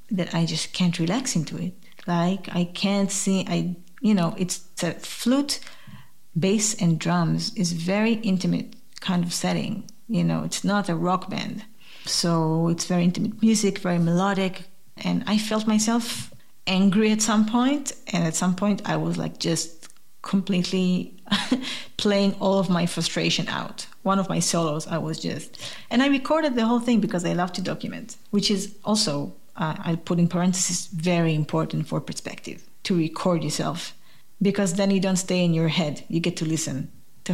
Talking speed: 175 wpm